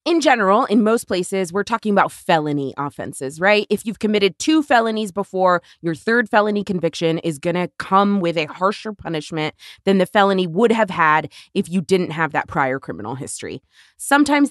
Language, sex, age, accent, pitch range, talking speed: English, female, 20-39, American, 165-220 Hz, 180 wpm